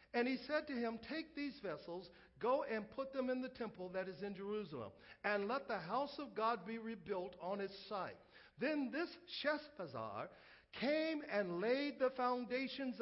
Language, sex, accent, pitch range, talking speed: English, male, American, 155-230 Hz, 175 wpm